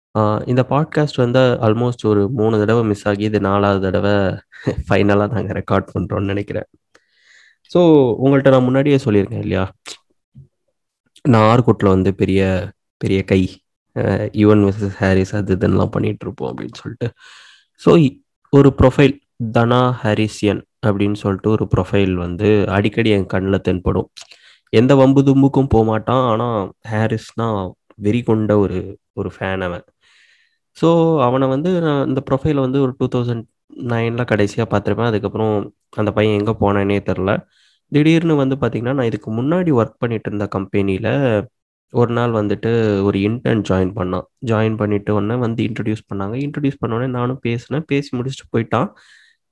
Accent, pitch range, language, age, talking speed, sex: native, 100-130 Hz, Tamil, 20-39, 130 wpm, male